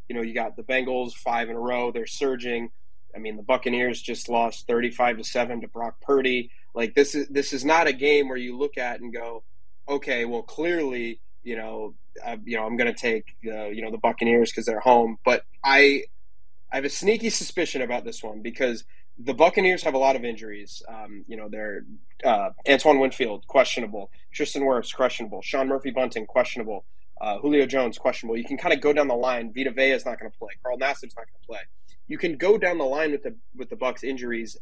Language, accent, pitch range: English, American, 115-135 Hz